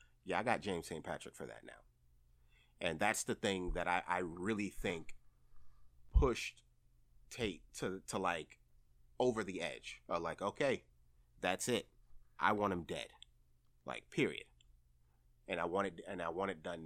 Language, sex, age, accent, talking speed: English, male, 30-49, American, 165 wpm